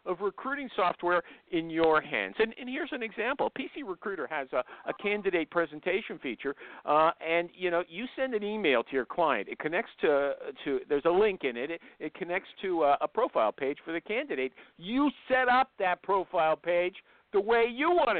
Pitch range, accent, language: 170-265 Hz, American, English